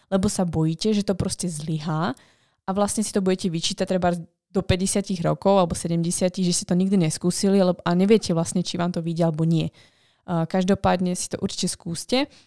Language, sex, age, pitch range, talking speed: Slovak, female, 20-39, 170-195 Hz, 185 wpm